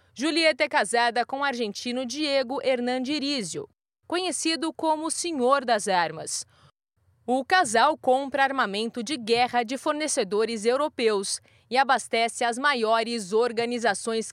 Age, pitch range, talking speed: 20-39, 230-285 Hz, 115 wpm